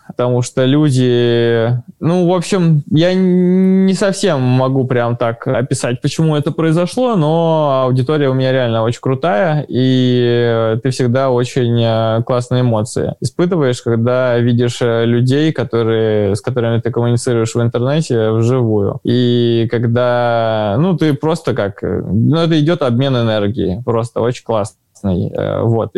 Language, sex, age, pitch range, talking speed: Russian, male, 20-39, 115-140 Hz, 125 wpm